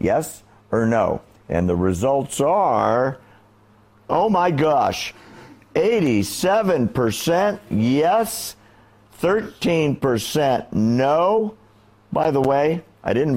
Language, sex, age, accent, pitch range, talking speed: English, male, 50-69, American, 105-145 Hz, 85 wpm